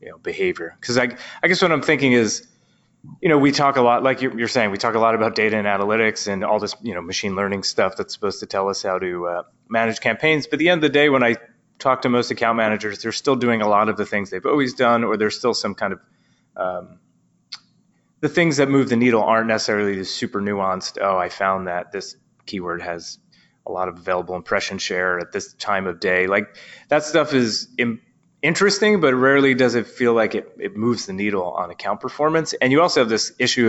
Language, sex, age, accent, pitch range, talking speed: English, male, 30-49, American, 100-130 Hz, 235 wpm